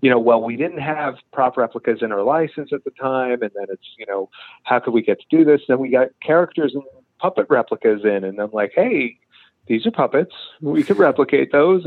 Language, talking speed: English, 225 wpm